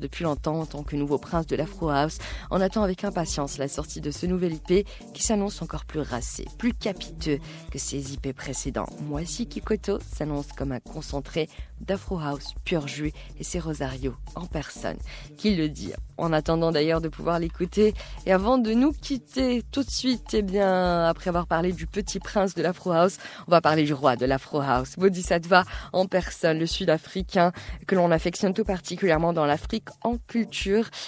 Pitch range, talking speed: 150-195 Hz, 190 wpm